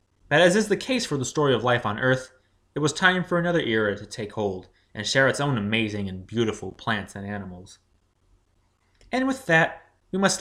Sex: male